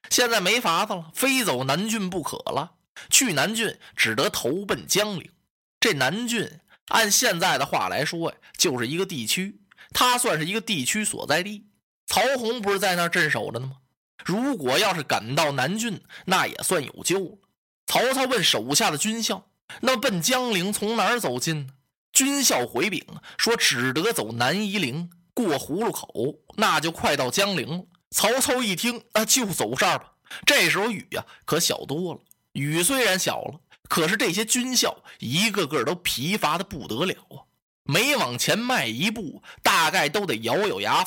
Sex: male